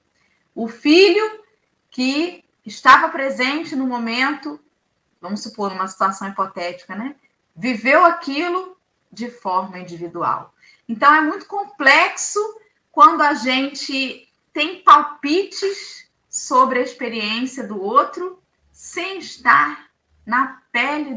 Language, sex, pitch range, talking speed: Portuguese, female, 210-290 Hz, 100 wpm